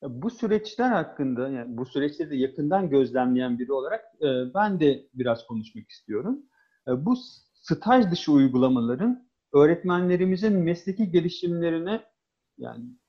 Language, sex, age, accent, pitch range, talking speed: Turkish, male, 40-59, native, 145-215 Hz, 110 wpm